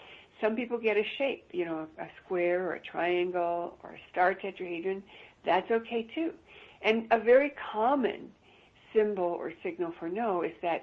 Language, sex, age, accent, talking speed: English, female, 60-79, American, 170 wpm